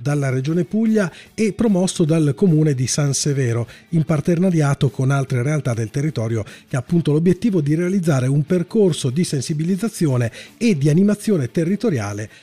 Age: 40-59